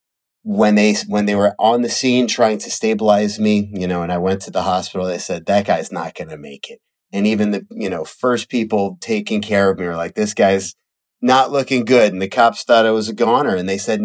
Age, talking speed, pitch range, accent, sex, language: 30-49, 250 wpm, 105-150 Hz, American, male, English